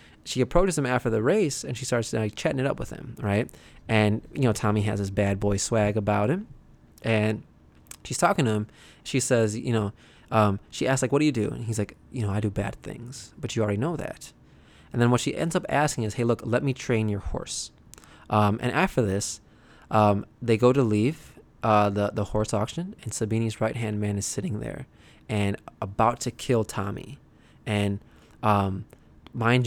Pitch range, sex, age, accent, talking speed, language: 105-120 Hz, male, 20-39, American, 205 wpm, English